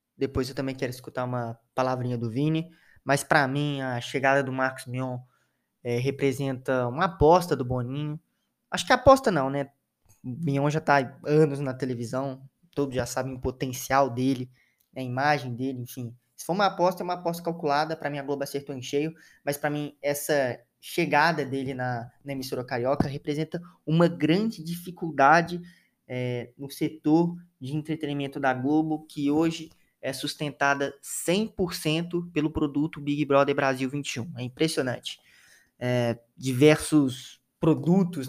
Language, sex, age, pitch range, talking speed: Portuguese, male, 20-39, 130-150 Hz, 150 wpm